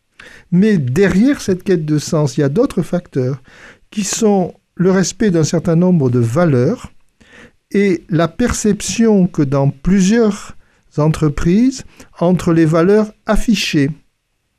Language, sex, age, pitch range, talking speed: French, male, 50-69, 150-205 Hz, 130 wpm